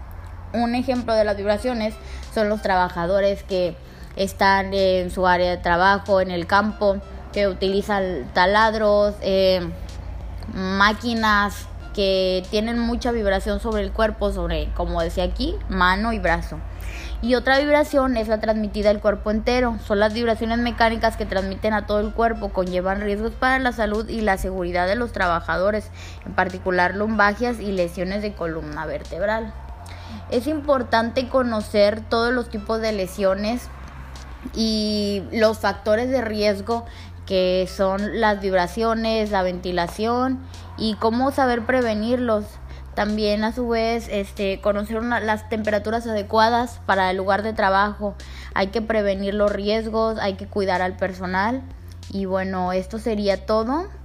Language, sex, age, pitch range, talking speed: Spanish, female, 20-39, 185-225 Hz, 140 wpm